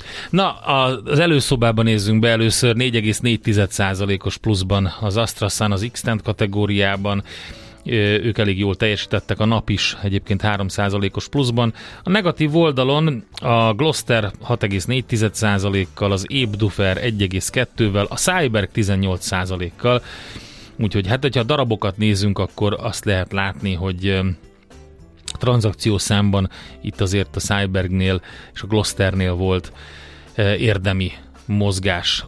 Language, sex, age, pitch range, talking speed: Hungarian, male, 30-49, 100-115 Hz, 110 wpm